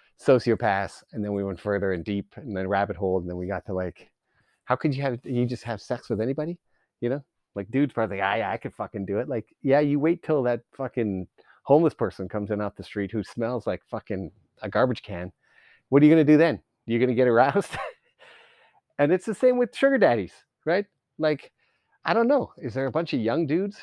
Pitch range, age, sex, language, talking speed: 110-150 Hz, 30-49, male, English, 225 wpm